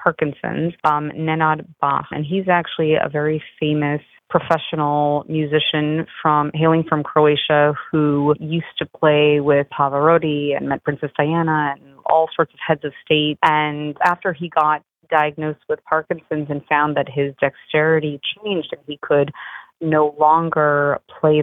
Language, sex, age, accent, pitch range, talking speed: English, female, 30-49, American, 145-165 Hz, 145 wpm